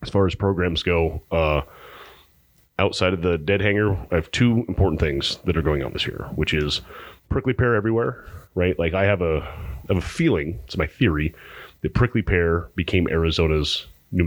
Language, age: English, 30-49